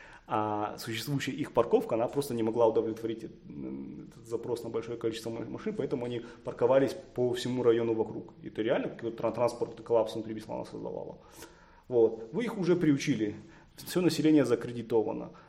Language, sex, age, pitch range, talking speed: Russian, male, 30-49, 110-125 Hz, 150 wpm